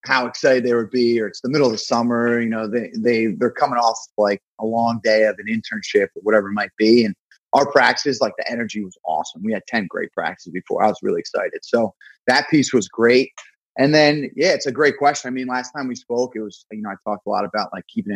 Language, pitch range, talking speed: English, 105-125 Hz, 260 wpm